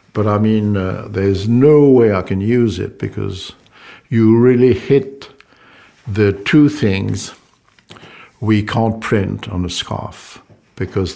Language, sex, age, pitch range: Korean, male, 60-79, 95-110 Hz